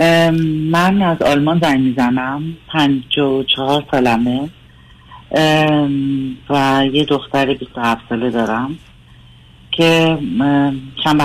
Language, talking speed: Persian, 105 wpm